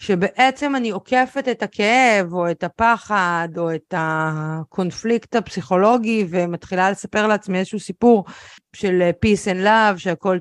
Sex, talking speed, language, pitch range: female, 125 wpm, Hebrew, 185-245 Hz